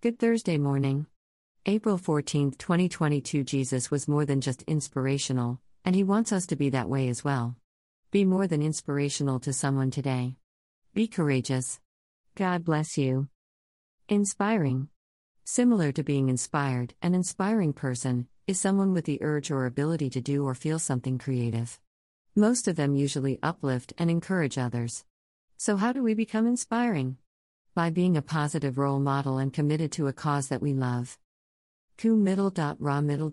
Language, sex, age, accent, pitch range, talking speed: English, female, 50-69, American, 130-170 Hz, 155 wpm